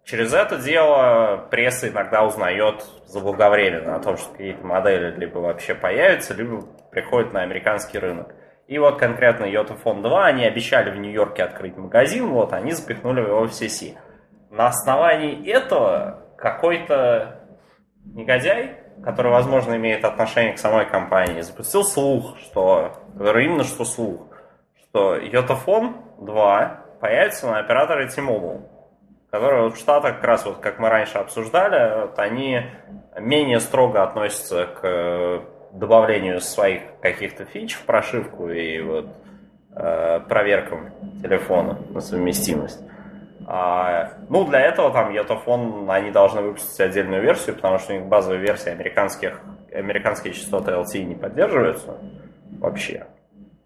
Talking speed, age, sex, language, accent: 125 wpm, 20-39, male, Russian, native